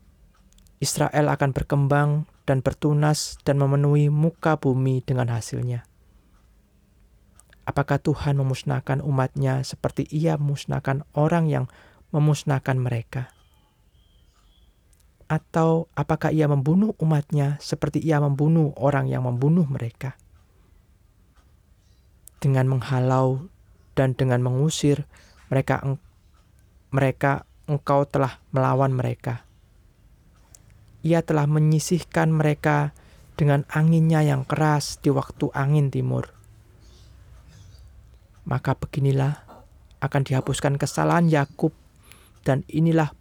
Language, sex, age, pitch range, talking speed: Indonesian, male, 20-39, 120-150 Hz, 90 wpm